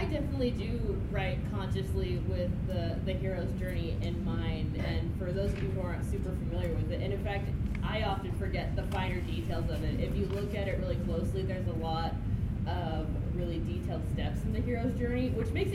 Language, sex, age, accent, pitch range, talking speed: English, female, 20-39, American, 95-110 Hz, 200 wpm